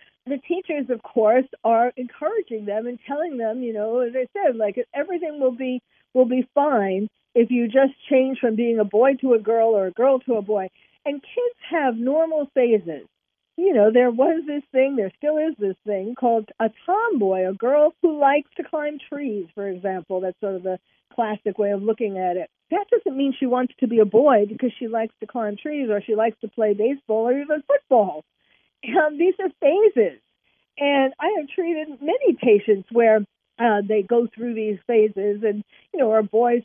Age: 50-69